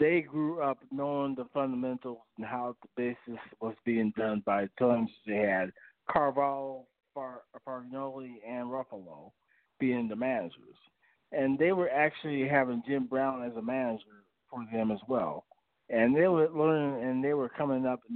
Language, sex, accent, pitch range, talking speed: English, male, American, 110-135 Hz, 160 wpm